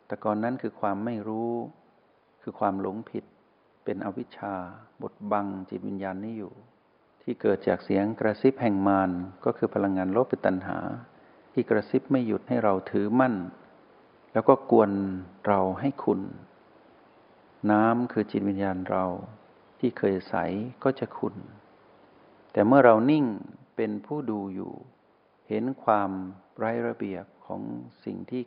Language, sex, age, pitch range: Thai, male, 60-79, 95-120 Hz